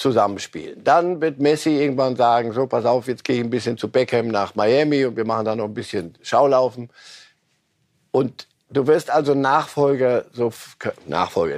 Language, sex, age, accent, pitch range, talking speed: German, male, 50-69, German, 120-150 Hz, 170 wpm